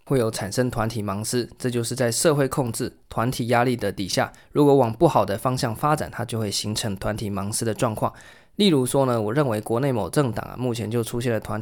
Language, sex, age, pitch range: Chinese, male, 20-39, 110-135 Hz